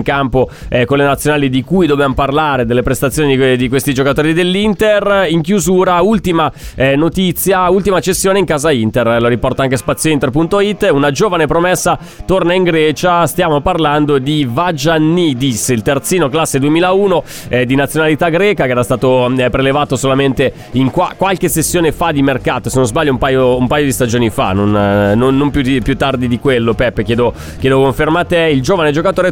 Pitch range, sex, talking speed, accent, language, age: 130-160 Hz, male, 185 wpm, native, Italian, 20-39